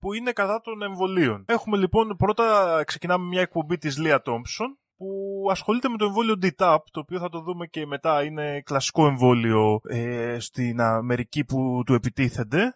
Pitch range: 130-200 Hz